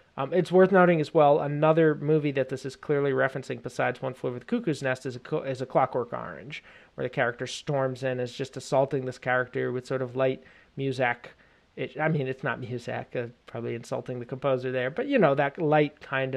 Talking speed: 215 wpm